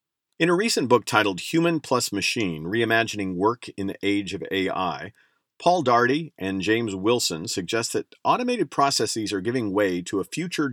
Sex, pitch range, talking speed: male, 95-125 Hz, 170 wpm